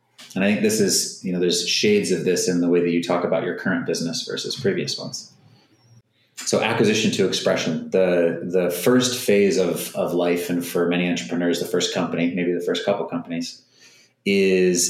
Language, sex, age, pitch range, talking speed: English, male, 30-49, 85-95 Hz, 195 wpm